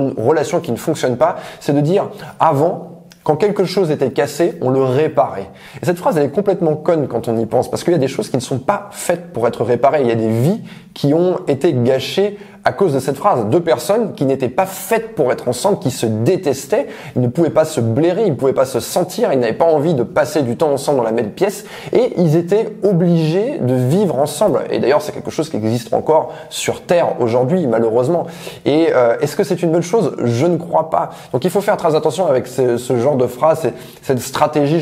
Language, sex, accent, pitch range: French, male, French, 125-175 Hz